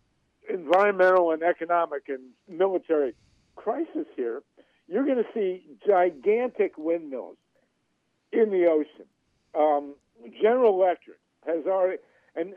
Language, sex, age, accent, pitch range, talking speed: English, male, 60-79, American, 155-230 Hz, 105 wpm